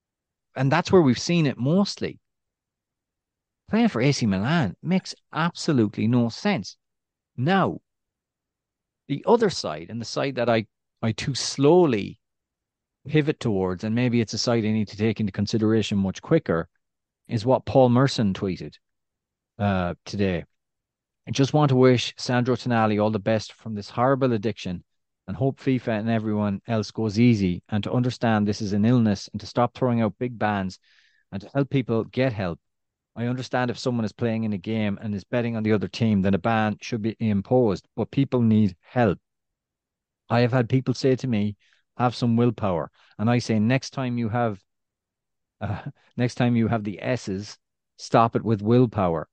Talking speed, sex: 175 wpm, male